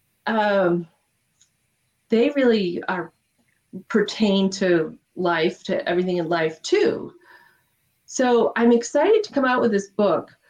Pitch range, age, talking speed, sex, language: 180-235 Hz, 40-59, 120 wpm, female, English